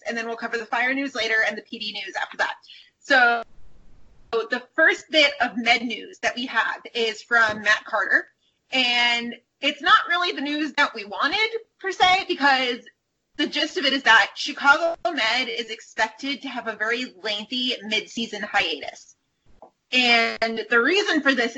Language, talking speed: English, 170 wpm